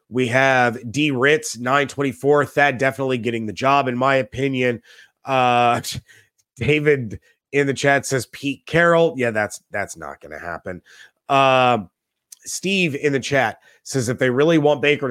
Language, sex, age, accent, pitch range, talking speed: English, male, 30-49, American, 115-145 Hz, 155 wpm